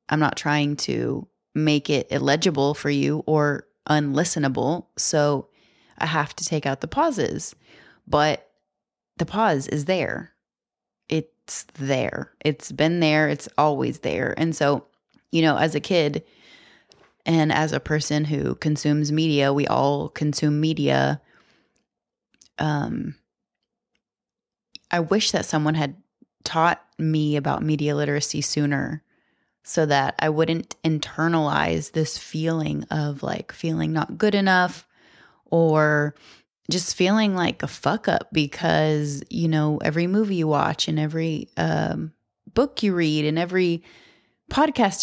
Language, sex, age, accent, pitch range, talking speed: English, female, 20-39, American, 145-175 Hz, 130 wpm